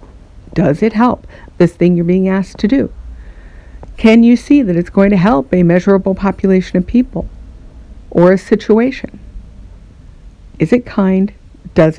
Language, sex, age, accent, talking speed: English, female, 60-79, American, 150 wpm